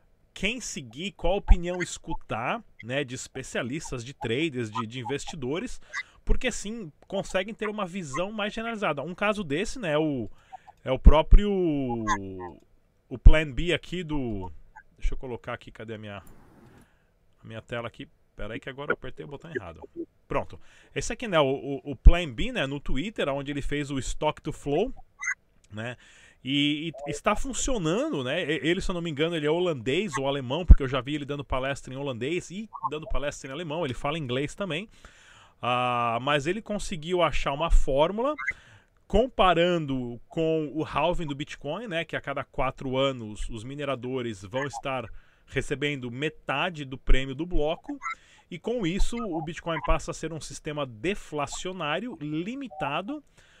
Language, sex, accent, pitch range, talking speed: Portuguese, male, Brazilian, 130-175 Hz, 165 wpm